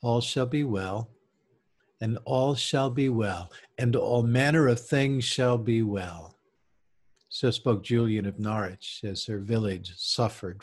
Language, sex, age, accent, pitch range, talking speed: English, male, 50-69, American, 105-135 Hz, 145 wpm